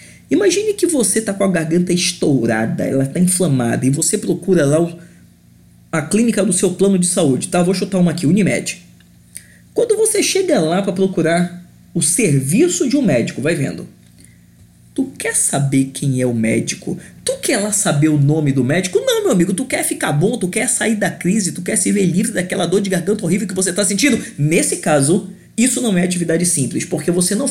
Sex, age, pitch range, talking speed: male, 20-39, 155-205 Hz, 205 wpm